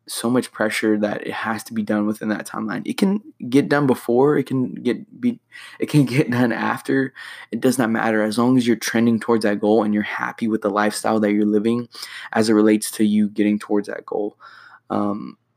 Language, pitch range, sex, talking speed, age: English, 105-115 Hz, male, 220 wpm, 20-39